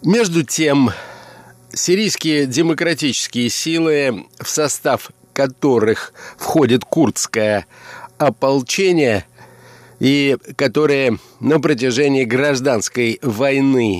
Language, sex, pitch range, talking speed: Russian, male, 125-155 Hz, 75 wpm